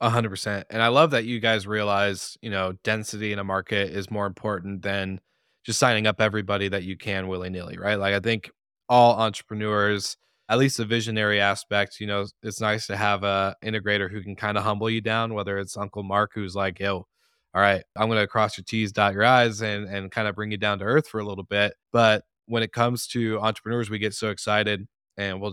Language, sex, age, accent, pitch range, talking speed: English, male, 20-39, American, 100-110 Hz, 230 wpm